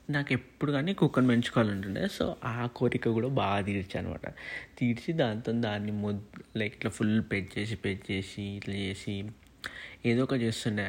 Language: Telugu